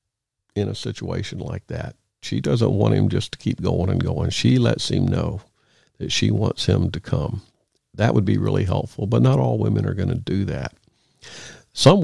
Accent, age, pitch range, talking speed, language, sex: American, 50-69, 100-130 Hz, 200 wpm, English, male